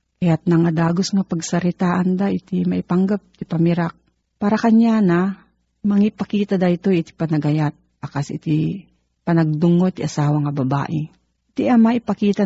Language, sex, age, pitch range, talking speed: Filipino, female, 40-59, 160-205 Hz, 135 wpm